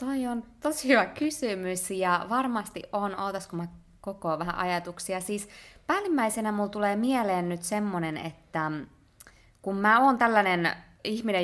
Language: Finnish